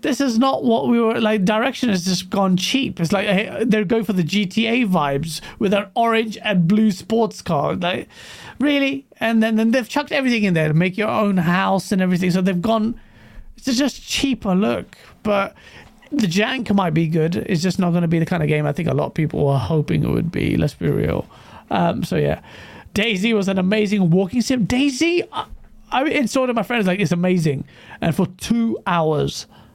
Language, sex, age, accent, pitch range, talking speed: English, male, 30-49, British, 180-235 Hz, 210 wpm